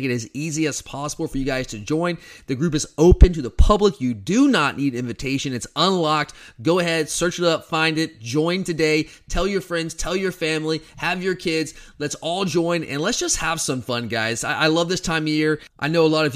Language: English